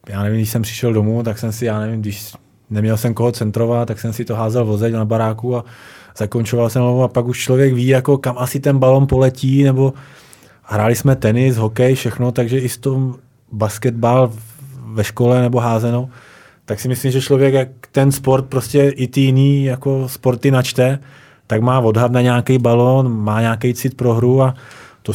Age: 20-39